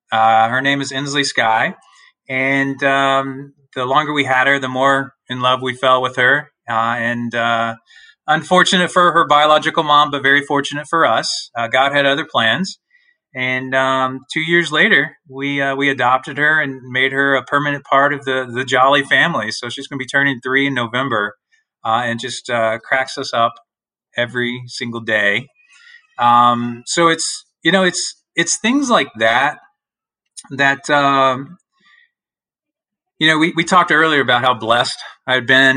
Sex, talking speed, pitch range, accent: male, 170 wpm, 125-150 Hz, American